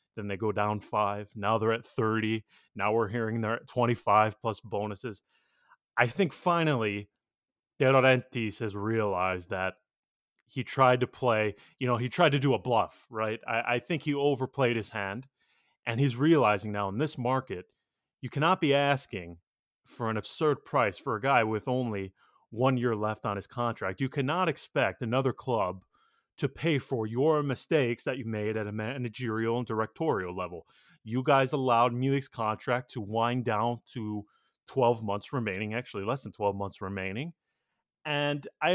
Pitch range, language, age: 110-135 Hz, English, 30-49